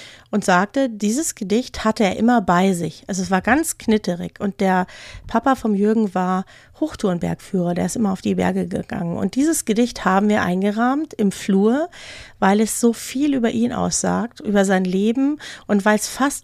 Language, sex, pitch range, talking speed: German, female, 195-240 Hz, 185 wpm